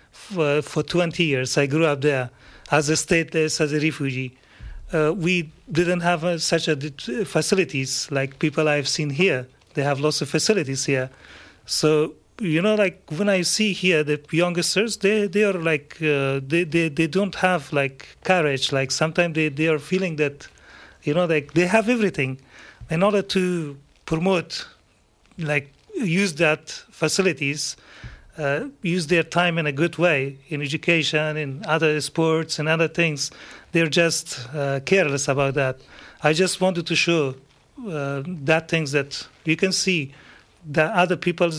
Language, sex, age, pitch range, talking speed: English, male, 40-59, 145-175 Hz, 160 wpm